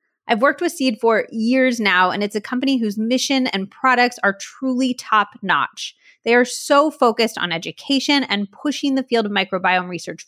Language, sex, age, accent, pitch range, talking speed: English, female, 30-49, American, 195-260 Hz, 180 wpm